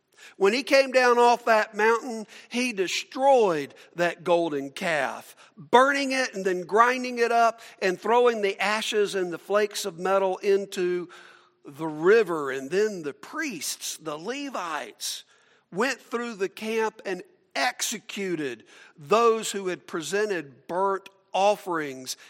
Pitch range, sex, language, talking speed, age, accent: 170-235 Hz, male, English, 130 wpm, 50-69, American